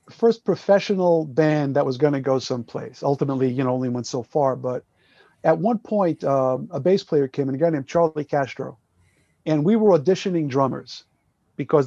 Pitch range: 140-180 Hz